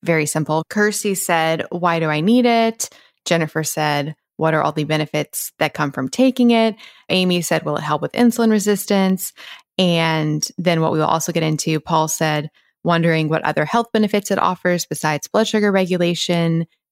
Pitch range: 160-200 Hz